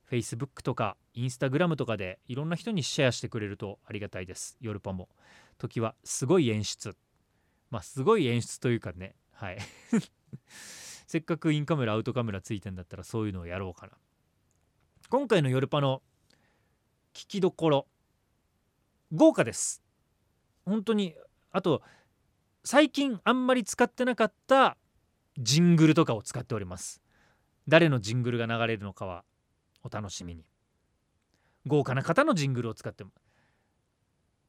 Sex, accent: male, native